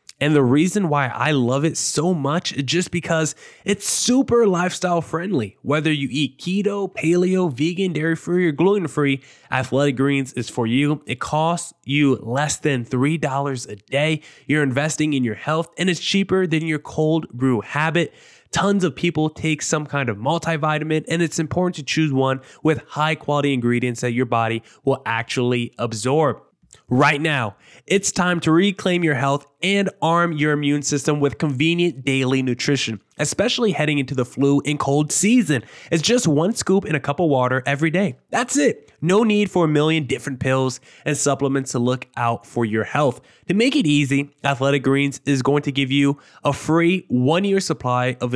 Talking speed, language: 180 wpm, English